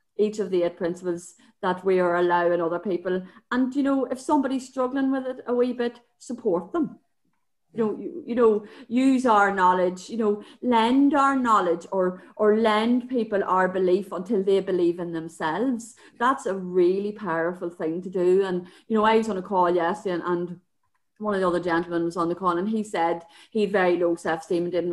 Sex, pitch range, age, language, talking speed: female, 175-240 Hz, 30-49, English, 205 wpm